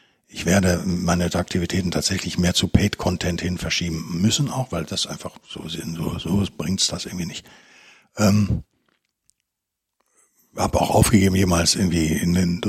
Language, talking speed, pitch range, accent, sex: German, 155 wpm, 95-130 Hz, German, male